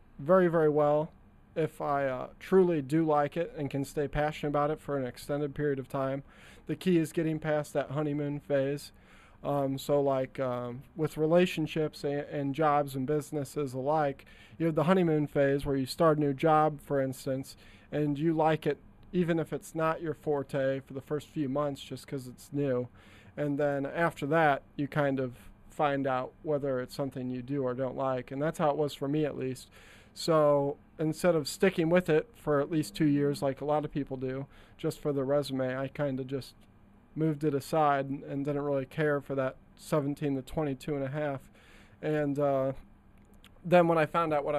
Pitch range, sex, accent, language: 135-155 Hz, male, American, English